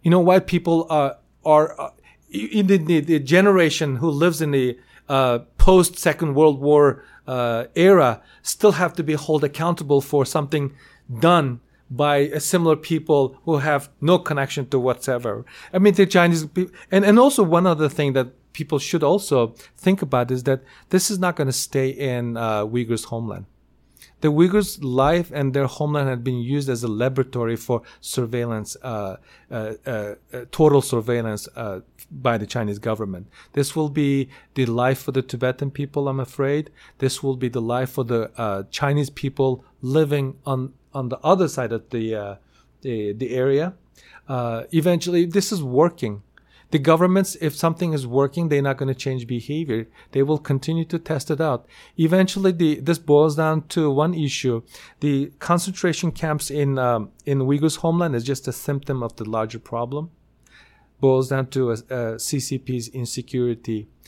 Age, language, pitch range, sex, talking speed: 40-59, English, 120-155 Hz, male, 170 wpm